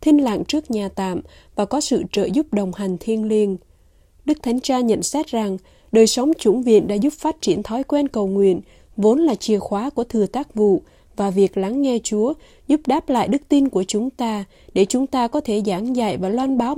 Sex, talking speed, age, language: female, 225 wpm, 20-39, Vietnamese